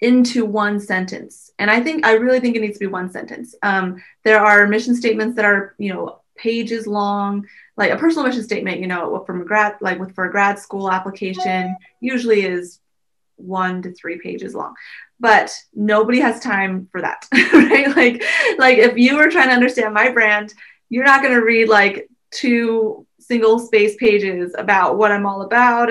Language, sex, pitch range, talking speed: English, female, 195-230 Hz, 190 wpm